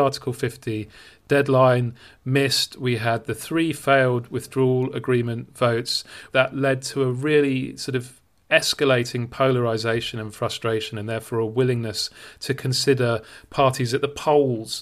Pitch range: 120-140 Hz